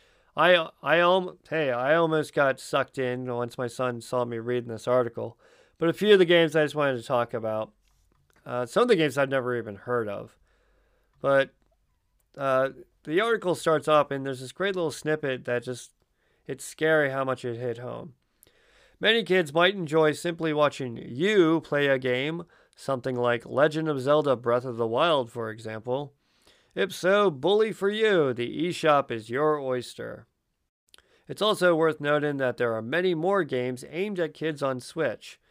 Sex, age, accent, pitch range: male, 40-59, American, 125-160 Hz